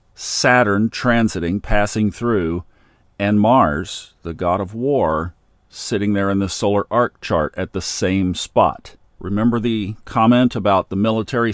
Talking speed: 140 wpm